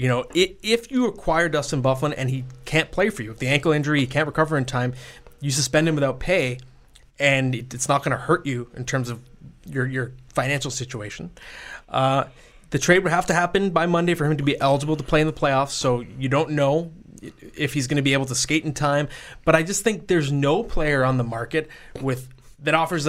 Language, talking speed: English, 225 wpm